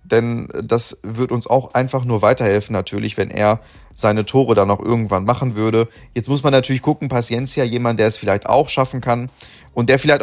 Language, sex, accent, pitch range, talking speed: German, male, German, 110-135 Hz, 200 wpm